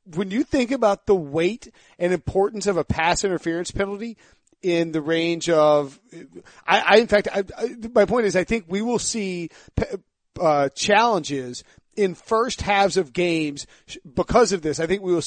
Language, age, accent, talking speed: English, 40-59, American, 170 wpm